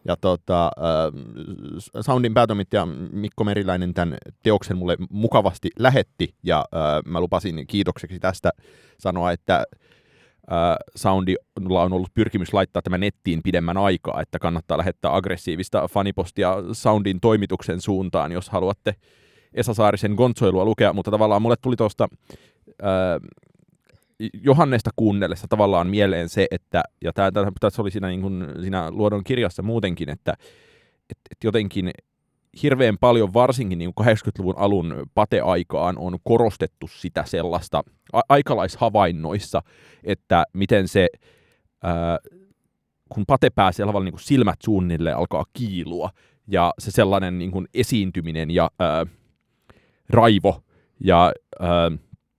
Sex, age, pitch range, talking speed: male, 30-49, 90-110 Hz, 110 wpm